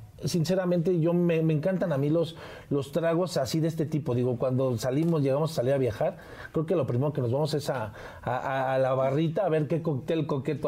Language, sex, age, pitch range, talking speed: Spanish, male, 40-59, 130-175 Hz, 225 wpm